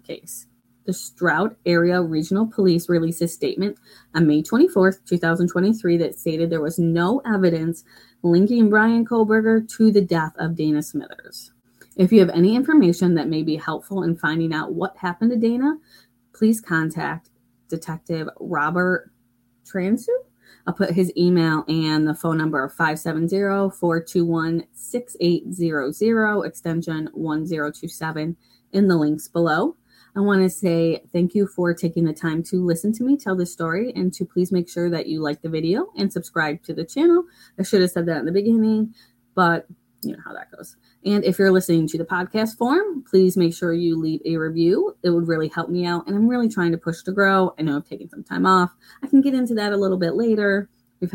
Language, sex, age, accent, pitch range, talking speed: English, female, 20-39, American, 160-195 Hz, 180 wpm